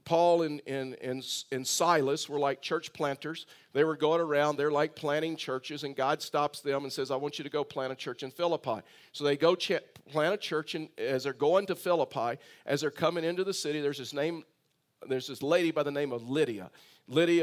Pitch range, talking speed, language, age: 145-170 Hz, 205 wpm, English, 50-69